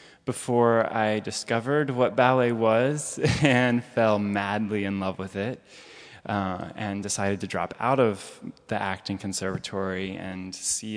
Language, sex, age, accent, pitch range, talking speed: English, male, 20-39, American, 100-120 Hz, 135 wpm